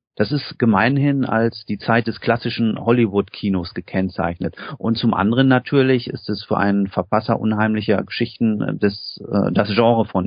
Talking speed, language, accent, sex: 145 wpm, German, German, male